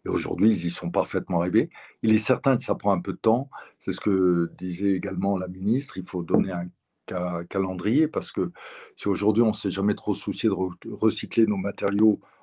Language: French